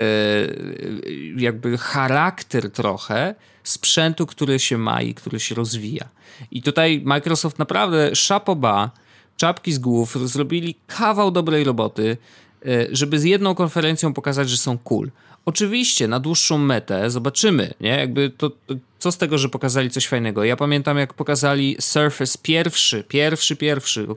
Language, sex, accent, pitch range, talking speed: Polish, male, native, 110-145 Hz, 140 wpm